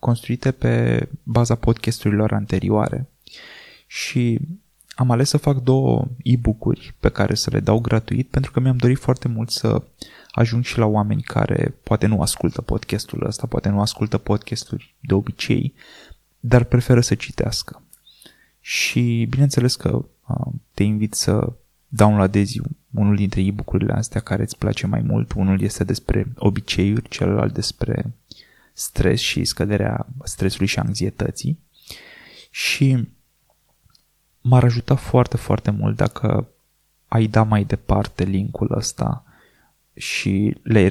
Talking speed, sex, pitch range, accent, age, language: 130 wpm, male, 105-125 Hz, native, 20-39, Romanian